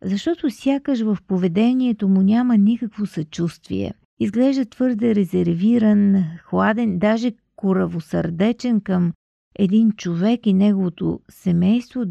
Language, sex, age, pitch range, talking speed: Bulgarian, female, 50-69, 185-235 Hz, 100 wpm